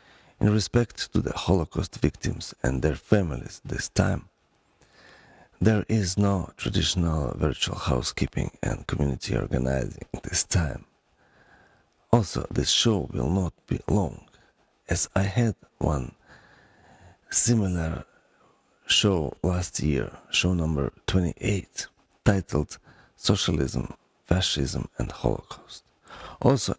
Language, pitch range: English, 80-105 Hz